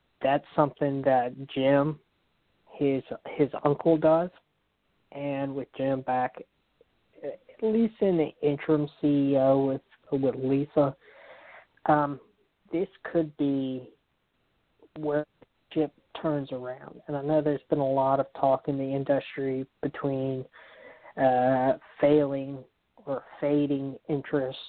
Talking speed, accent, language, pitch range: 115 wpm, American, English, 135-150 Hz